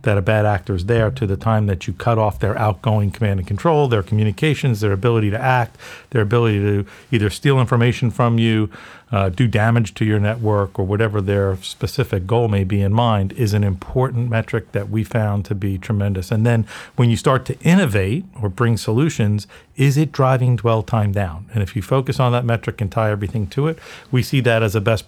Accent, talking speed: American, 220 wpm